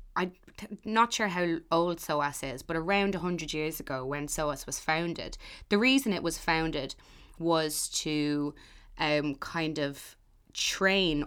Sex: female